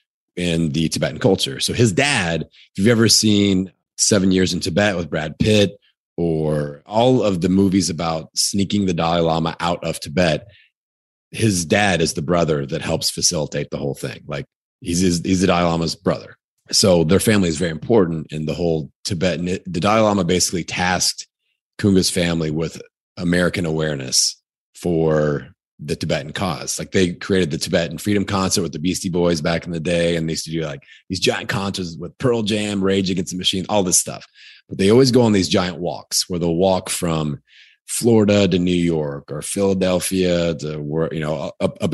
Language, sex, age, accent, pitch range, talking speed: English, male, 30-49, American, 80-95 Hz, 185 wpm